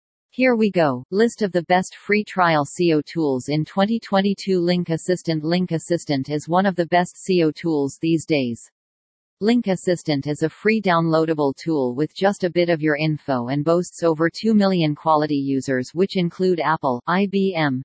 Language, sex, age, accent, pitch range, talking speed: English, female, 40-59, American, 150-180 Hz, 170 wpm